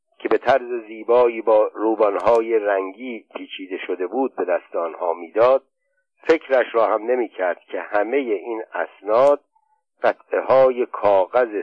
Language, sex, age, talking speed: Persian, male, 50-69, 130 wpm